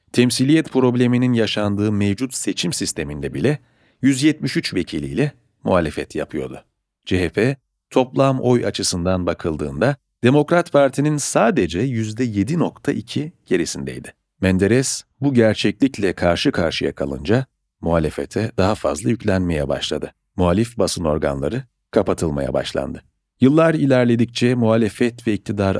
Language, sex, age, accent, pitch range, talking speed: Turkish, male, 40-59, native, 90-130 Hz, 100 wpm